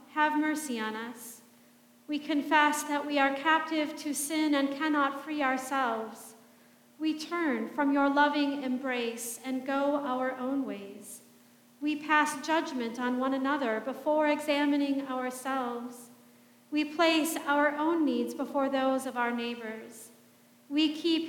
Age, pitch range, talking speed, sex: 40-59, 240-300 Hz, 135 wpm, female